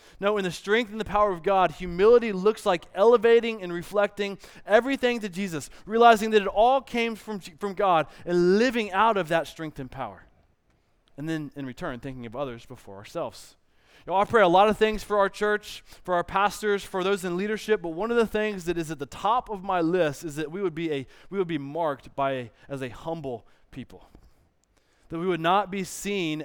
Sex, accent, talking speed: male, American, 220 wpm